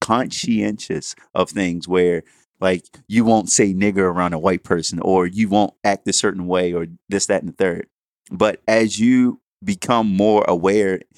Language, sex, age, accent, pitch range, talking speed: English, male, 30-49, American, 100-120 Hz, 170 wpm